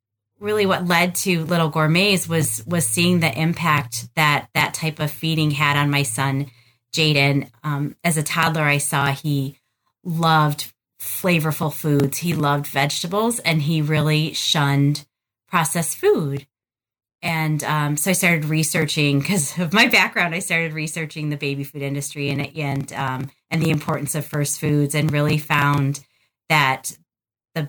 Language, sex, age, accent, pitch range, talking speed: English, female, 30-49, American, 140-165 Hz, 155 wpm